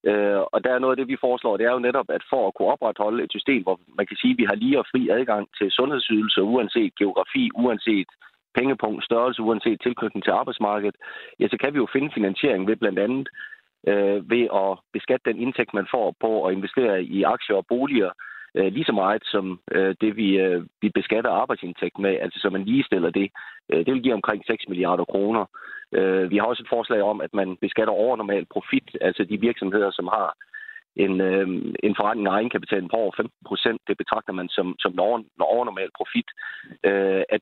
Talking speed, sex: 205 wpm, male